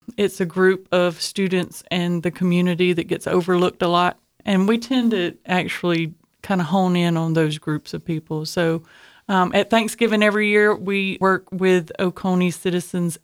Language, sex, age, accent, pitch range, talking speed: English, female, 30-49, American, 170-190 Hz, 170 wpm